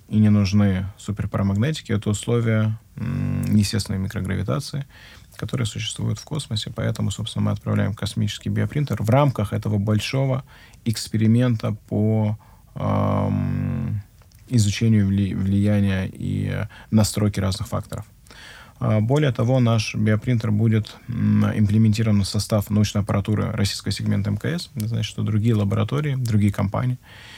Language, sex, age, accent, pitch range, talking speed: Russian, male, 20-39, native, 100-115 Hz, 110 wpm